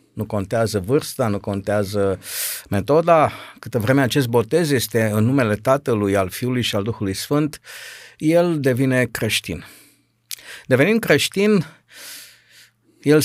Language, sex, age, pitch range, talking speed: Romanian, male, 50-69, 110-145 Hz, 120 wpm